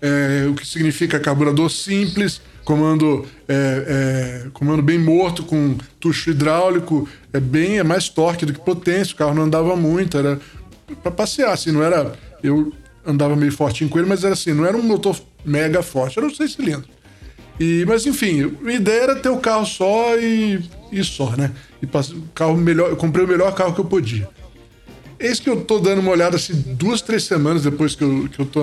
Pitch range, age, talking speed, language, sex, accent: 145-180 Hz, 20-39, 195 wpm, Portuguese, male, Brazilian